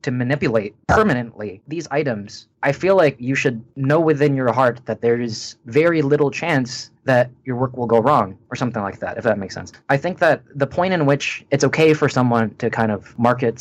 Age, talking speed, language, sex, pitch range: 20-39, 215 wpm, English, male, 115-140 Hz